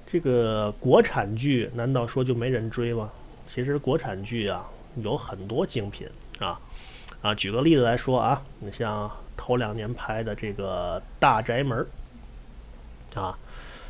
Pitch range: 110-145 Hz